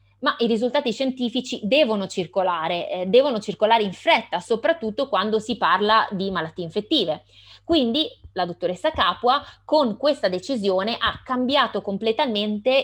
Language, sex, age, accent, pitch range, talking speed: Italian, female, 20-39, native, 180-240 Hz, 130 wpm